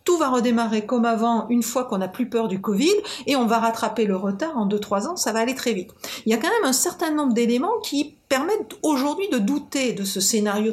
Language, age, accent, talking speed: French, 50-69, French, 245 wpm